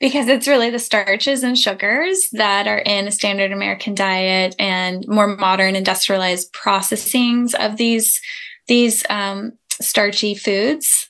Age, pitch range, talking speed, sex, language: 10-29, 195-230 Hz, 135 wpm, female, English